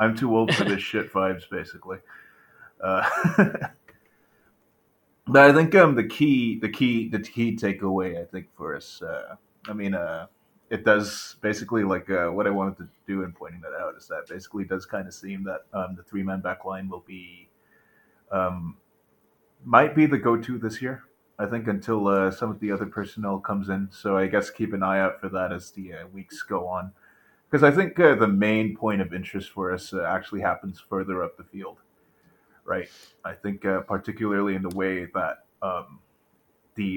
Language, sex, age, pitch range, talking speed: English, male, 30-49, 95-110 Hz, 190 wpm